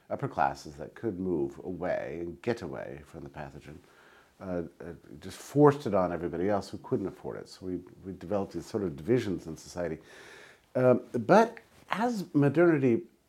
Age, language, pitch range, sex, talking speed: 50-69, English, 80-115 Hz, male, 165 wpm